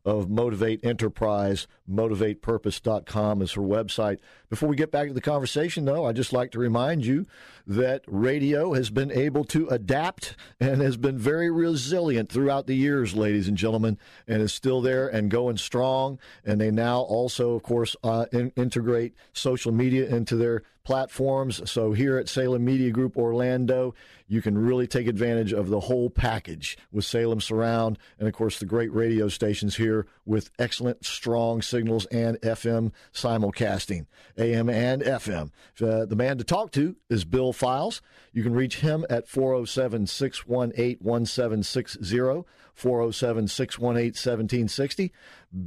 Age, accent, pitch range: 50-69, American, 110-130 Hz